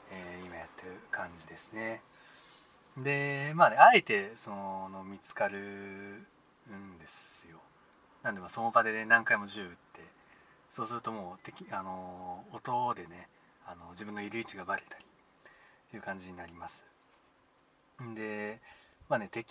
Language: Japanese